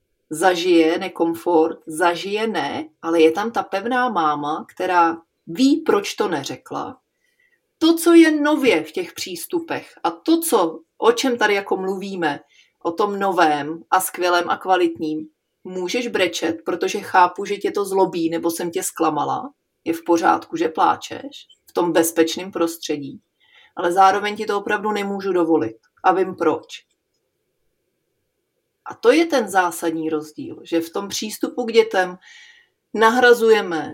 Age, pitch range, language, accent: 30-49, 170-245 Hz, Czech, native